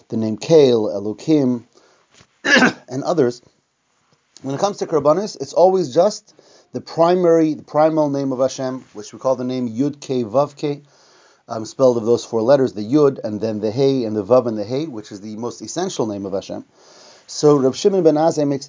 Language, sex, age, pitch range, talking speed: English, male, 30-49, 125-165 Hz, 195 wpm